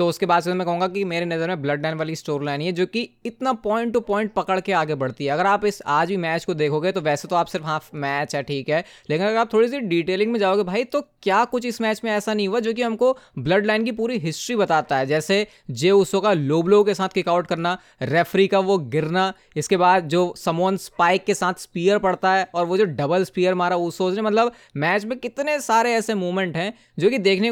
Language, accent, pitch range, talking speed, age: Hindi, native, 170-210 Hz, 250 wpm, 20-39